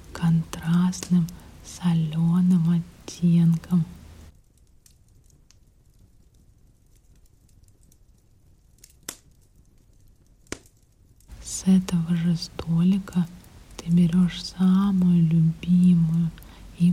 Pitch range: 160-180 Hz